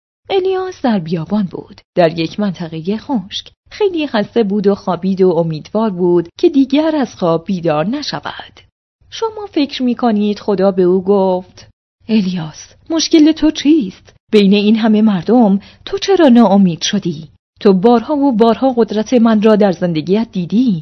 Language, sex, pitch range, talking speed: Persian, female, 185-260 Hz, 145 wpm